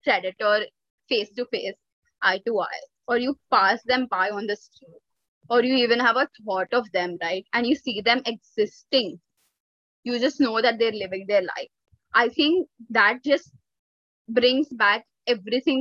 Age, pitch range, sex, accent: 20-39, 220-275 Hz, female, Indian